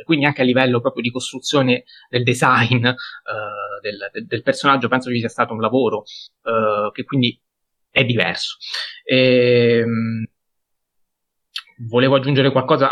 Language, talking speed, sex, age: Italian, 115 wpm, male, 20-39